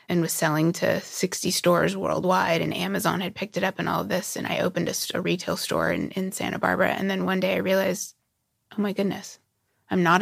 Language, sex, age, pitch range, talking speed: English, female, 20-39, 170-195 Hz, 230 wpm